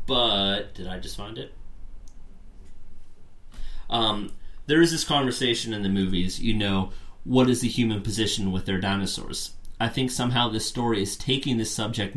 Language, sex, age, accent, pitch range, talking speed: English, male, 30-49, American, 90-115 Hz, 165 wpm